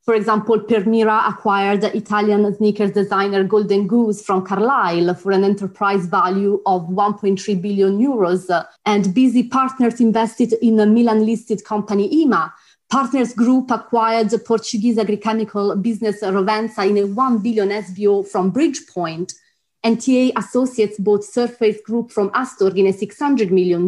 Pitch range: 200-235 Hz